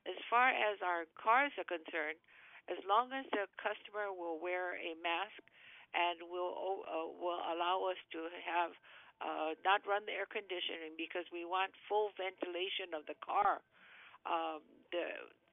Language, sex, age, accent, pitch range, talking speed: English, female, 60-79, American, 170-195 Hz, 155 wpm